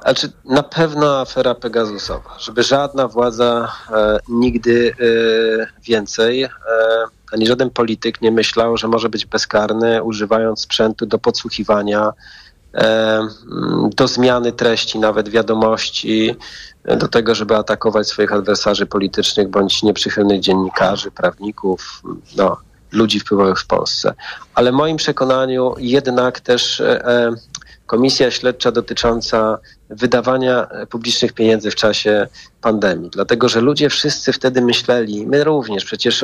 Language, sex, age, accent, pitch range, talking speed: Polish, male, 40-59, native, 110-125 Hz, 110 wpm